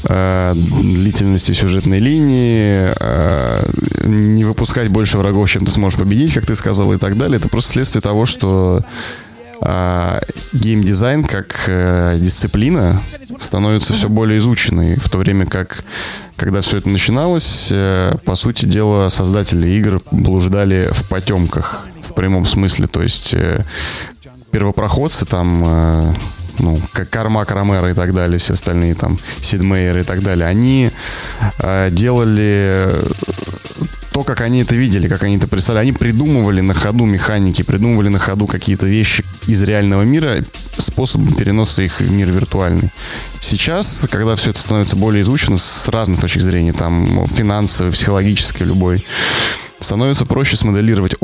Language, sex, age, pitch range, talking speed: Russian, male, 20-39, 95-115 Hz, 135 wpm